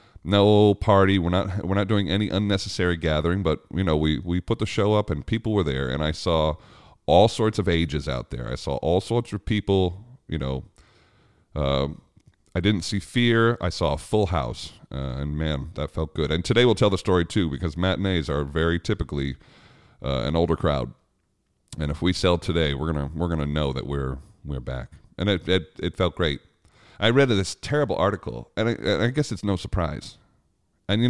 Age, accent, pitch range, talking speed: 40-59, American, 80-105 Hz, 205 wpm